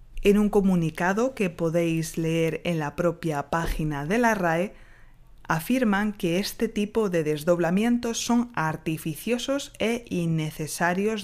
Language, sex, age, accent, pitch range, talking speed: Spanish, female, 20-39, Spanish, 160-210 Hz, 125 wpm